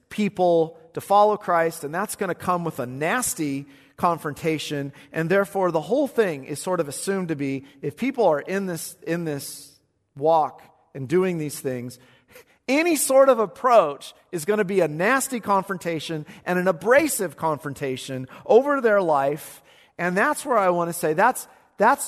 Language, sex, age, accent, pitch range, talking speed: English, male, 40-59, American, 135-200 Hz, 170 wpm